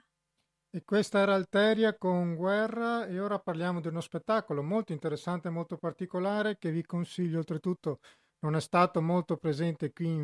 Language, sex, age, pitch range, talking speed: Italian, male, 40-59, 165-190 Hz, 165 wpm